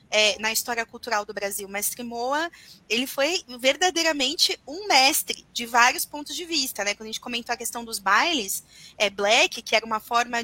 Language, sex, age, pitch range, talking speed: Portuguese, female, 20-39, 220-280 Hz, 195 wpm